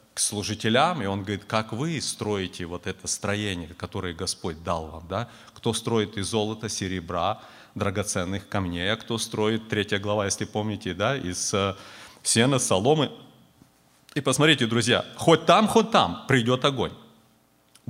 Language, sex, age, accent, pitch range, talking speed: Russian, male, 30-49, native, 95-145 Hz, 145 wpm